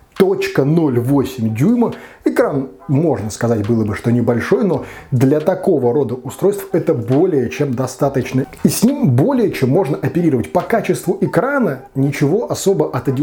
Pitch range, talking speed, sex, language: 120-160 Hz, 140 wpm, male, Russian